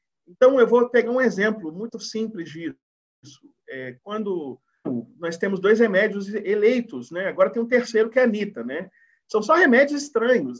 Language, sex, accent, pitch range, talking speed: Portuguese, male, Brazilian, 175-235 Hz, 170 wpm